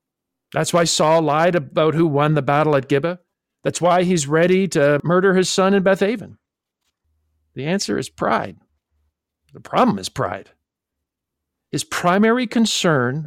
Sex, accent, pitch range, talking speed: male, American, 140-215 Hz, 145 wpm